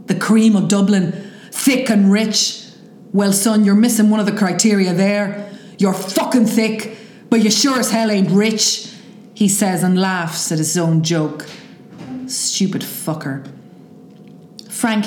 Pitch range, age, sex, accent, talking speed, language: 175-220 Hz, 30-49, female, Irish, 145 wpm, English